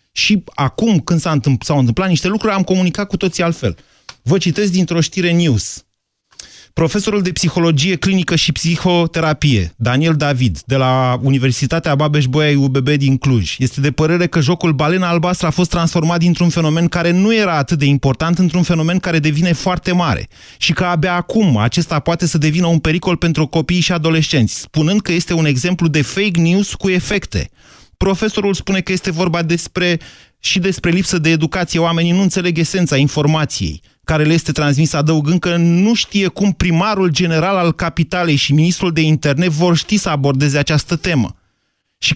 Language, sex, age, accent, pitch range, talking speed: Romanian, male, 30-49, native, 140-175 Hz, 175 wpm